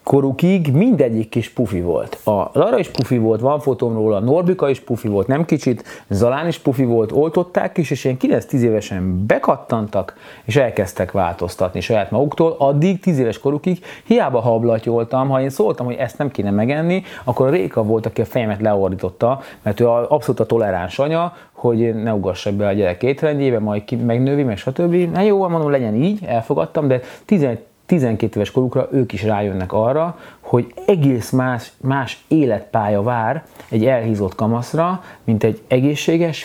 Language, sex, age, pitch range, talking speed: Hungarian, male, 30-49, 110-155 Hz, 170 wpm